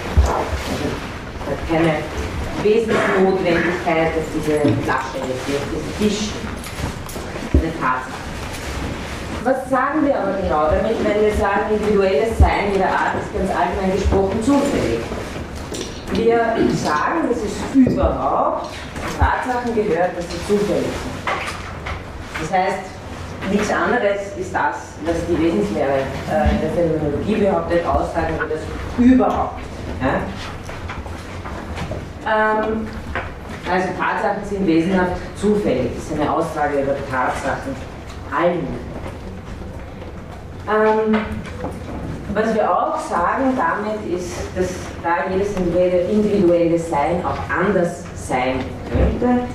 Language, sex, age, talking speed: German, female, 30-49, 110 wpm